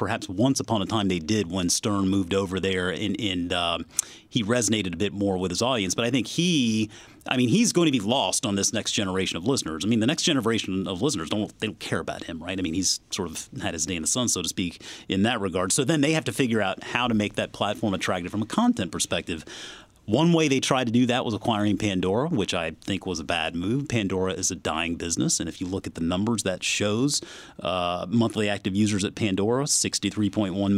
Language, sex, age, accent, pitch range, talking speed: English, male, 30-49, American, 95-115 Hz, 240 wpm